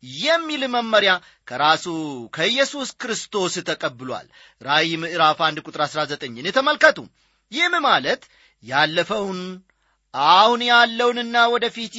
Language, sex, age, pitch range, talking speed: English, male, 40-59, 160-240 Hz, 105 wpm